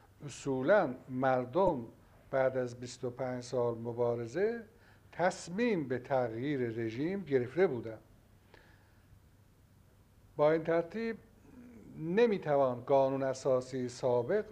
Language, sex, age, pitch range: Persian, male, 60-79, 110-165 Hz